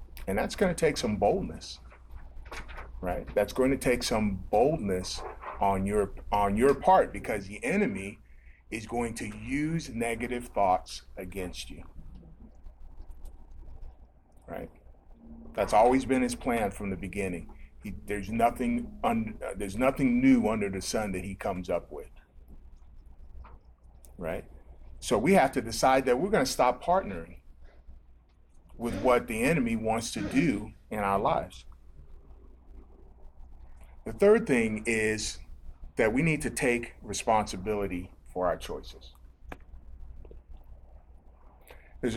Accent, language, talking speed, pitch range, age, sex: American, English, 130 wpm, 70-110 Hz, 40-59, male